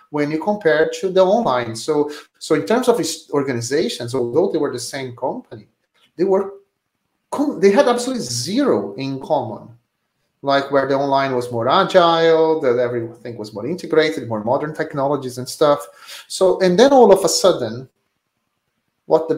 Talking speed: 160 wpm